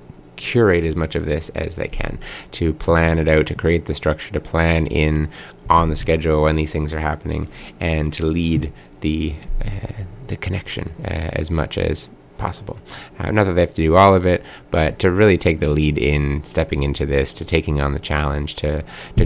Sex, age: male, 30-49